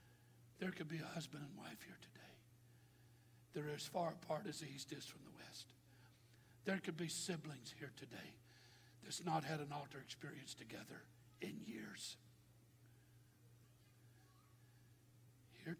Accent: American